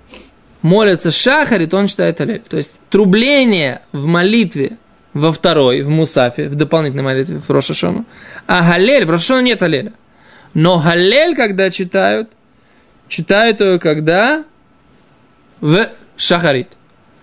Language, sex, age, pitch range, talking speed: Russian, male, 20-39, 150-190 Hz, 120 wpm